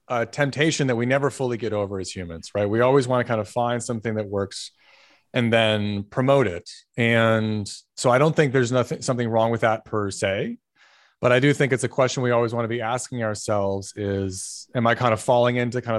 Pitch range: 110-130 Hz